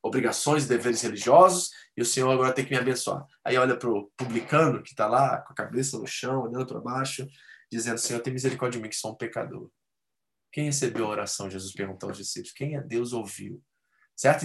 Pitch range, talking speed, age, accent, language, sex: 120-155 Hz, 210 wpm, 20-39, Brazilian, Portuguese, male